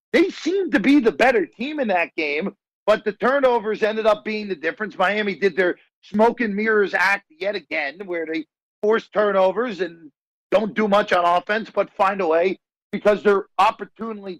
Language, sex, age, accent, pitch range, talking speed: English, male, 50-69, American, 185-245 Hz, 185 wpm